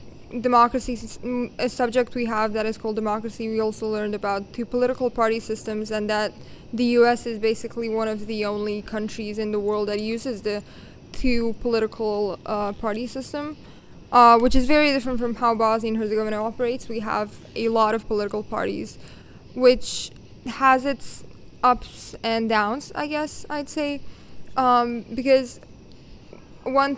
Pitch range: 220-250 Hz